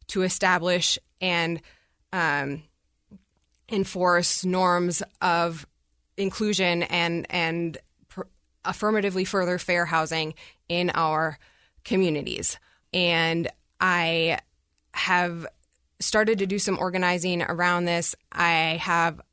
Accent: American